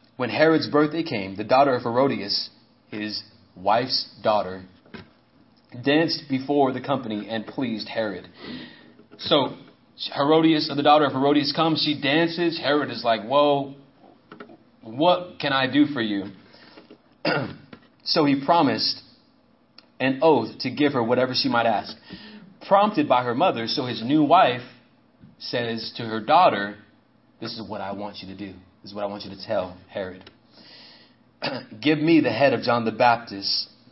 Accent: American